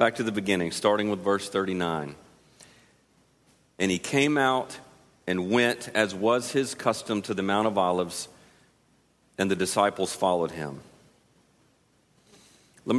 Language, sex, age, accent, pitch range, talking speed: English, male, 40-59, American, 100-130 Hz, 135 wpm